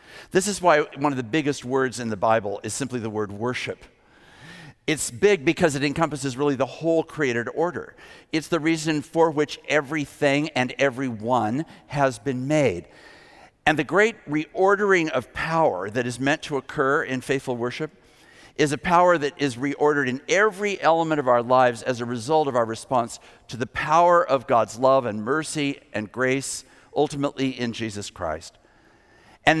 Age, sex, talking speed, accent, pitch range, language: 50-69, male, 170 wpm, American, 125-155 Hz, English